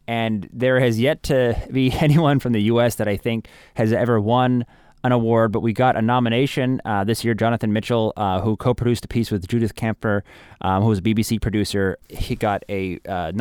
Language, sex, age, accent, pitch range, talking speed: English, male, 20-39, American, 95-115 Hz, 205 wpm